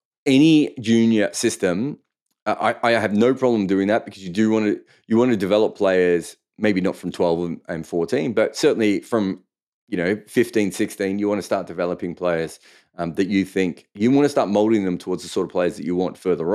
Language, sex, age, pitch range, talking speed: English, male, 30-49, 90-115 Hz, 210 wpm